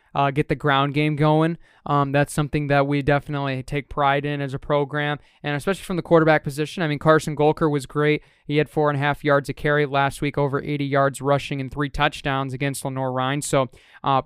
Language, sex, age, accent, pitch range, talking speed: English, male, 20-39, American, 140-155 Hz, 225 wpm